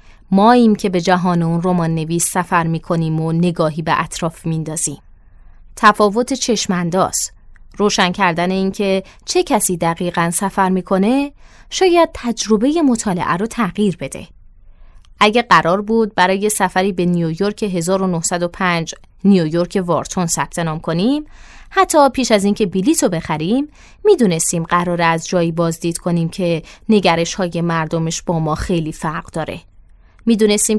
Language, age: Persian, 20-39